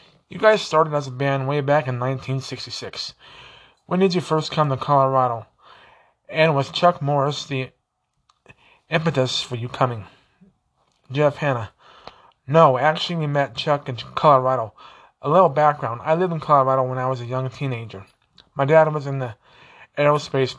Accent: American